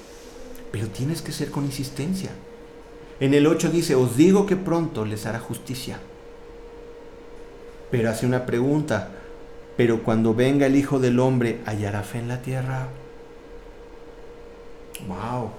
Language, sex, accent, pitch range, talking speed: Spanish, male, Mexican, 125-185 Hz, 130 wpm